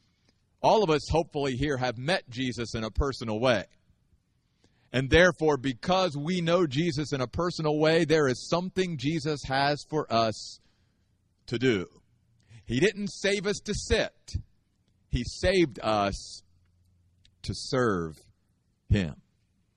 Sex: male